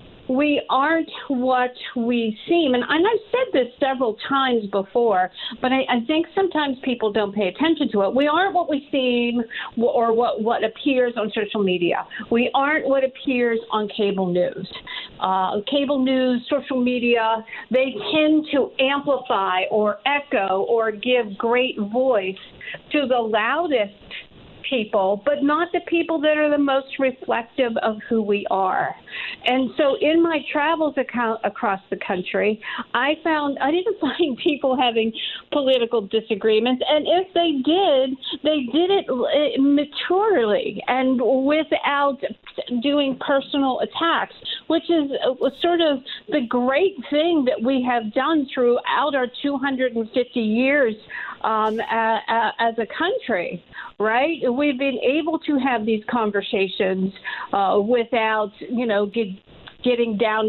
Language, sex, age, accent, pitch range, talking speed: English, female, 50-69, American, 225-290 Hz, 140 wpm